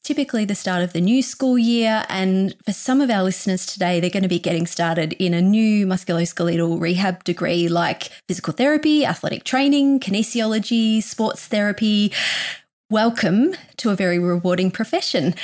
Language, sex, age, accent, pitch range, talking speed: English, female, 20-39, Australian, 185-250 Hz, 160 wpm